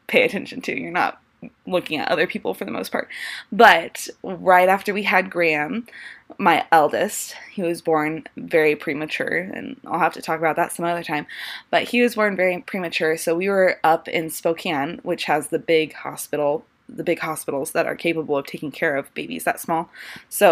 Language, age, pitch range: English, 20-39, 160-185 Hz